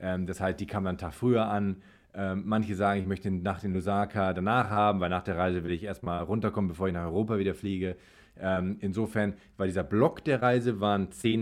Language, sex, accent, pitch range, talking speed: German, male, German, 90-105 Hz, 230 wpm